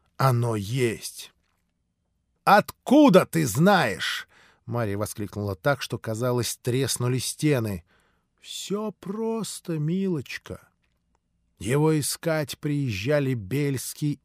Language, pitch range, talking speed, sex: Russian, 105-155 Hz, 80 wpm, male